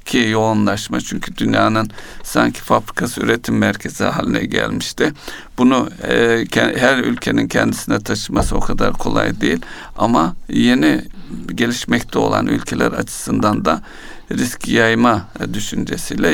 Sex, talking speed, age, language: male, 105 wpm, 60-79, Turkish